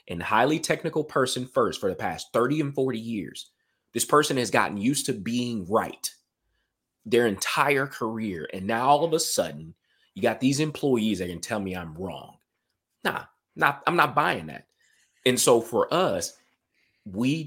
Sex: male